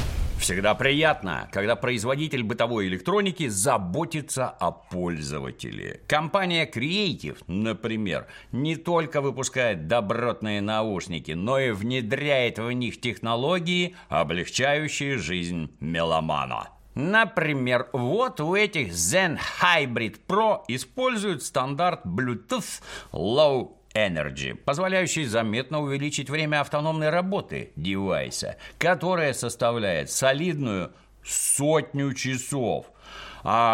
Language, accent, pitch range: Russian, native, 105-150 Hz